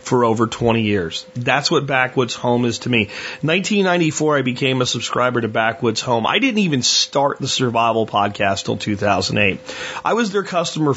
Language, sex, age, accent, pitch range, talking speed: English, male, 30-49, American, 115-150 Hz, 175 wpm